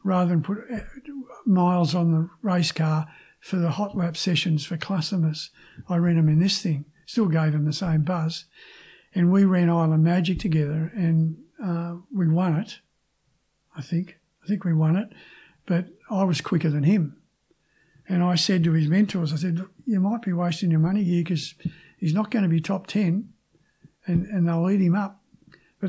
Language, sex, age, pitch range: English, male, 50-69, 165-195 Hz